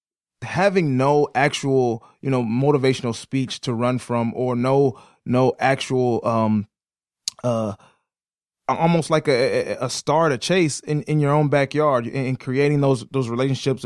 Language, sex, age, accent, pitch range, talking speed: English, male, 20-39, American, 110-135 Hz, 145 wpm